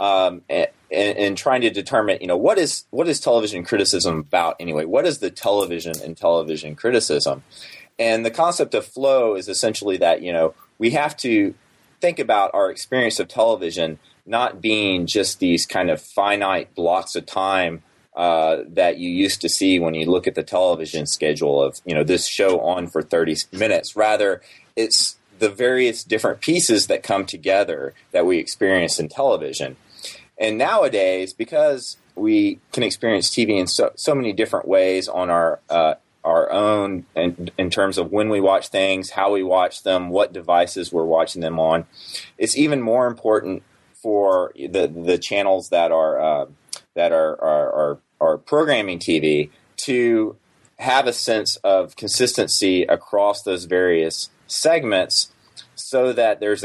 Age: 30-49